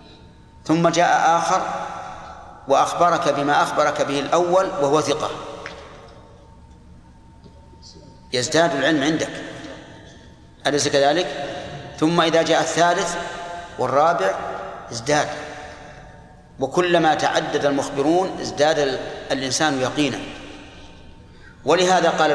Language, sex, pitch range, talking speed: Arabic, male, 130-160 Hz, 80 wpm